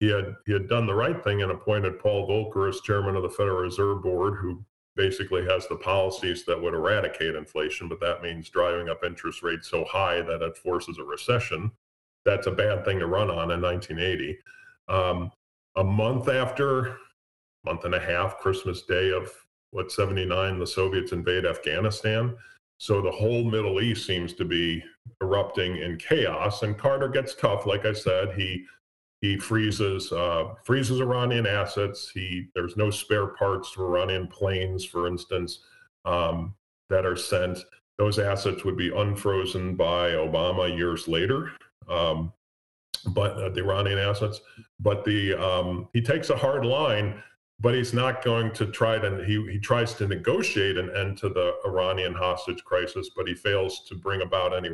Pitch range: 90-115 Hz